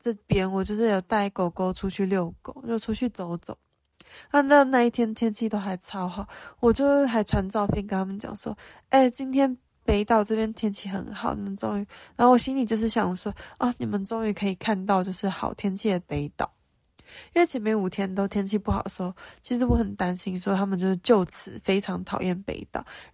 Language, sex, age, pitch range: Chinese, female, 20-39, 185-230 Hz